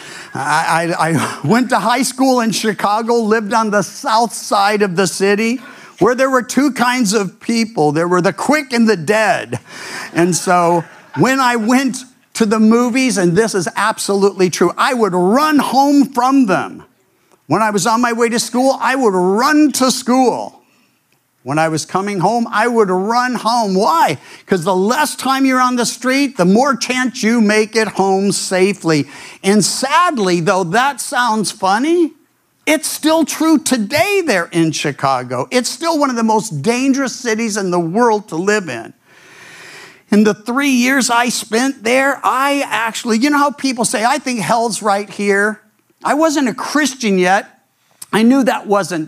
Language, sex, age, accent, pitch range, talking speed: English, male, 50-69, American, 180-255 Hz, 175 wpm